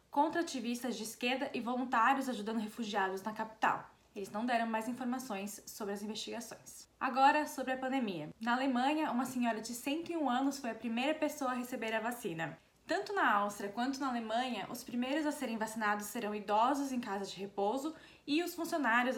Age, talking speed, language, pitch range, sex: 20-39, 180 wpm, Portuguese, 220-275 Hz, female